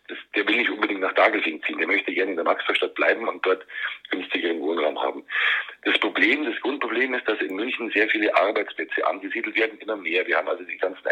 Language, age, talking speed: German, 50-69, 210 wpm